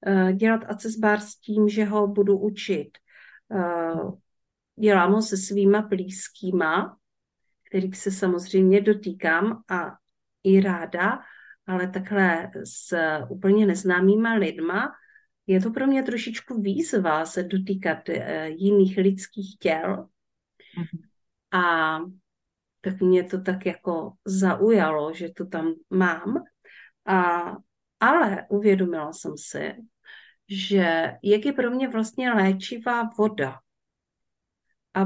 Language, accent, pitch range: Czech, native, 180-210 Hz